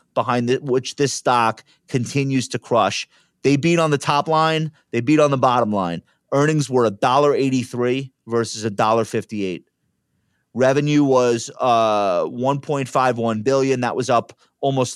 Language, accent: English, American